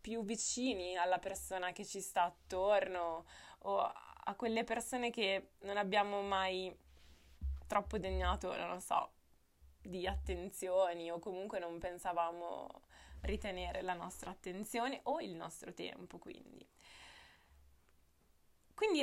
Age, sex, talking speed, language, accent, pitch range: 20-39, female, 115 wpm, Italian, native, 185-230 Hz